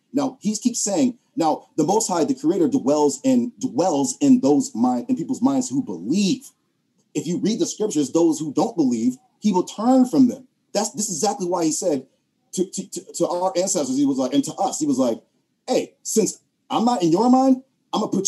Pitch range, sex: 175-270 Hz, male